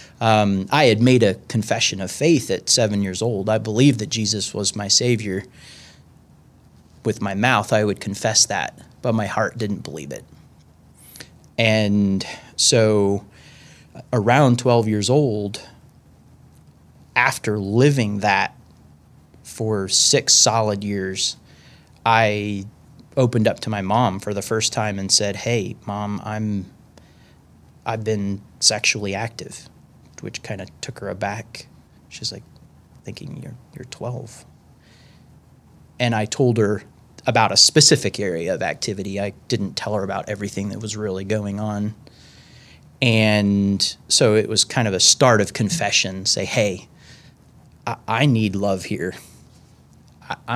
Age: 30-49